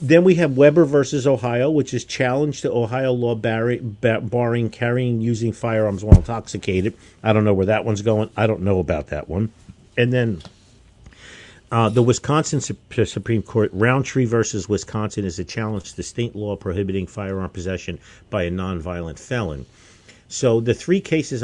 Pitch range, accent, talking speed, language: 100-125 Hz, American, 170 wpm, English